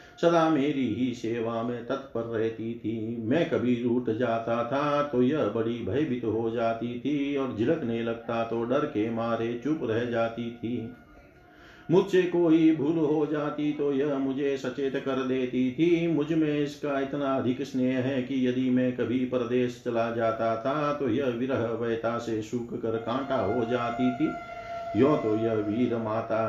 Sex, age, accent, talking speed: male, 50-69, native, 170 wpm